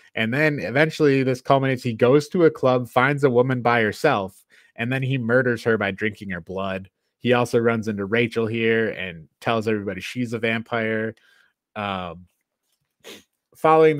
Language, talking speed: English, 165 wpm